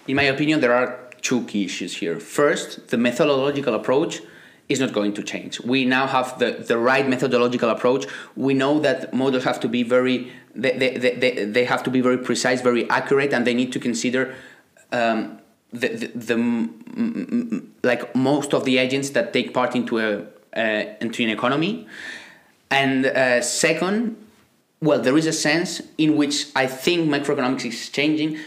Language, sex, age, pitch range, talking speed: English, male, 30-49, 125-150 Hz, 180 wpm